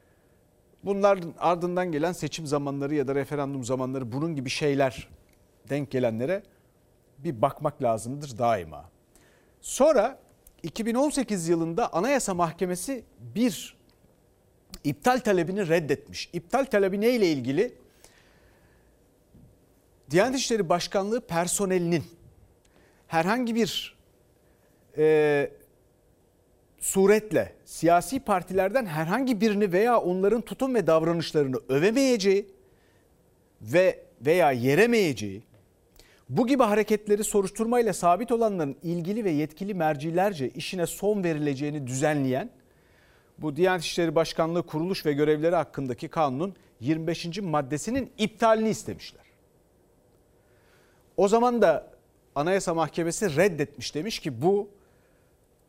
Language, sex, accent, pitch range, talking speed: Turkish, male, native, 145-205 Hz, 95 wpm